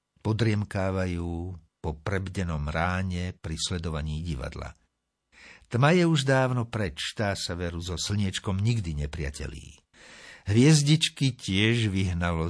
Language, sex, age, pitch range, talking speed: Slovak, male, 60-79, 80-115 Hz, 100 wpm